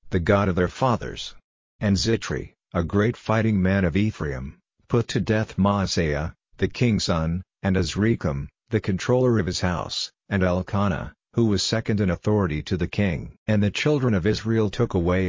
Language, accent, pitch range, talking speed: English, American, 90-110 Hz, 175 wpm